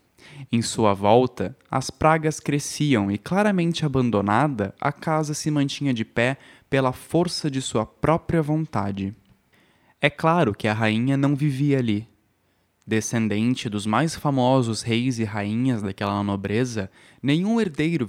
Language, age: Portuguese, 10-29